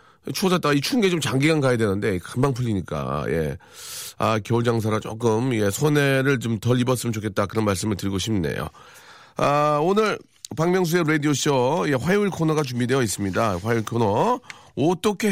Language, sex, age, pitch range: Korean, male, 40-59, 110-150 Hz